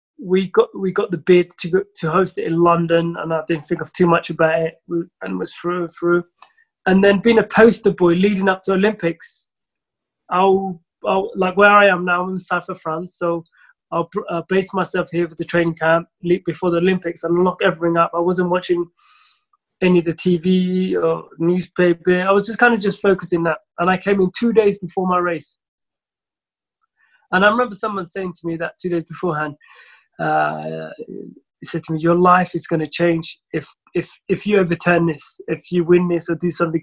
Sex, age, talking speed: male, 20-39, 205 wpm